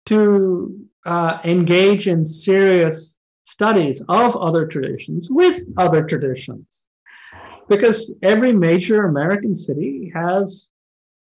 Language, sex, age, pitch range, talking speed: English, male, 50-69, 140-190 Hz, 95 wpm